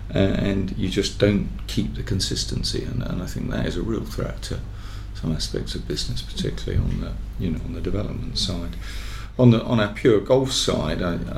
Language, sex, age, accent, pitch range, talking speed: English, male, 40-59, British, 85-100 Hz, 195 wpm